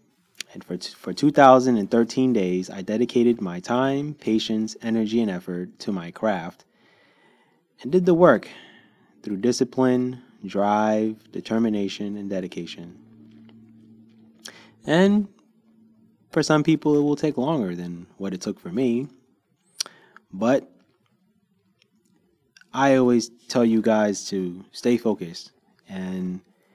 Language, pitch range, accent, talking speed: English, 100-120 Hz, American, 115 wpm